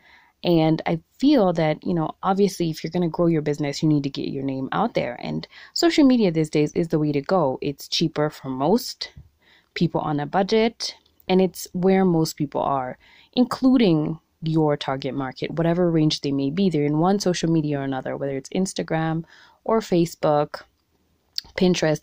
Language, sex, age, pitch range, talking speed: English, female, 20-39, 150-205 Hz, 185 wpm